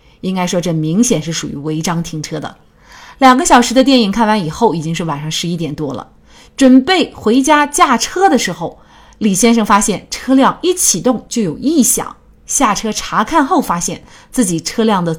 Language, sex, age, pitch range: Chinese, female, 30-49, 175-265 Hz